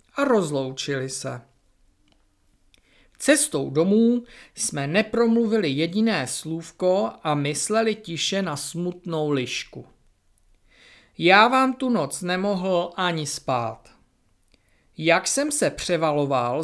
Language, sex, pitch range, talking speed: Czech, male, 135-210 Hz, 95 wpm